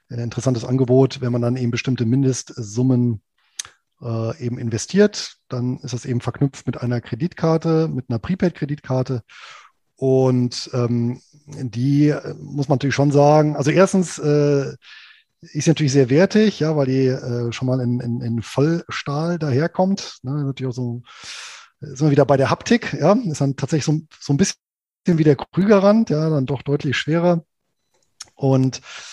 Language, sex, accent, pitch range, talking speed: German, male, German, 120-145 Hz, 160 wpm